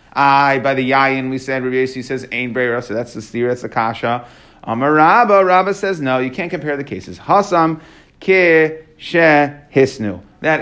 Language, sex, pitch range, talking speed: English, male, 135-180 Hz, 180 wpm